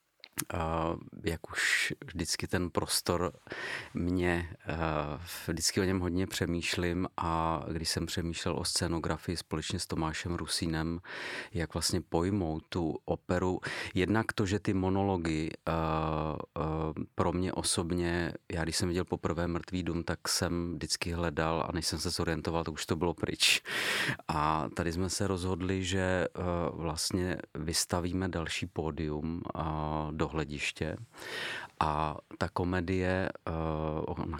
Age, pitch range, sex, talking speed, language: 40-59, 80-90 Hz, male, 135 wpm, Czech